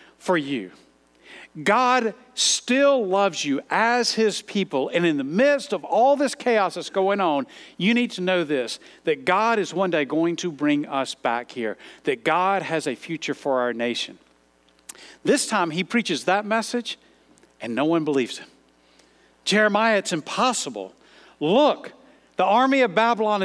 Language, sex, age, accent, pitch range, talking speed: English, male, 50-69, American, 150-225 Hz, 160 wpm